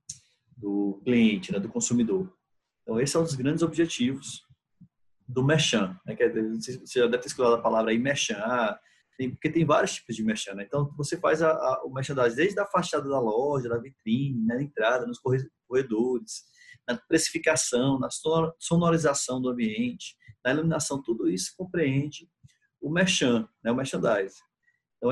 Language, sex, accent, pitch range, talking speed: Portuguese, male, Brazilian, 115-160 Hz, 160 wpm